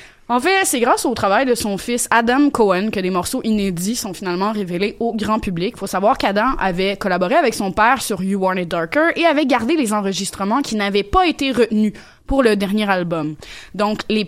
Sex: female